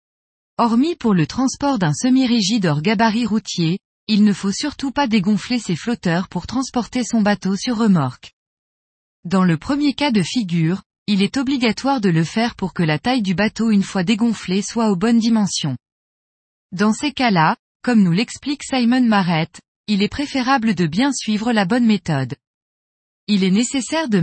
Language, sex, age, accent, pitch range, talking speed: French, female, 20-39, French, 180-245 Hz, 170 wpm